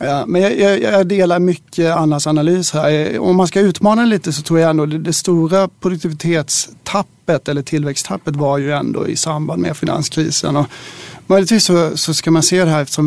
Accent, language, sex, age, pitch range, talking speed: native, Swedish, male, 30-49, 145-170 Hz, 200 wpm